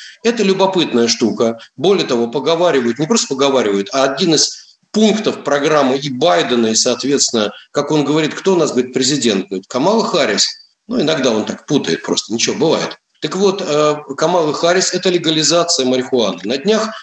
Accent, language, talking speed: native, Russian, 160 wpm